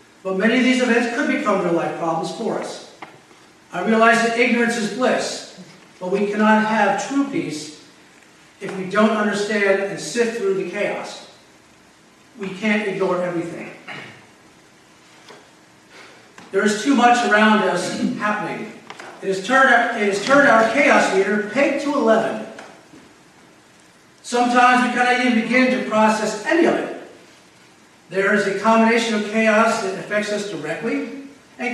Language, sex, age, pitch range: English, male, 50-69, 195-250 Hz